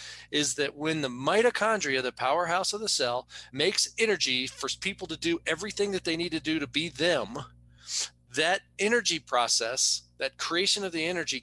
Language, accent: English, American